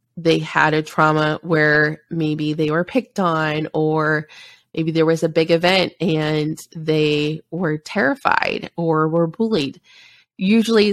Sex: female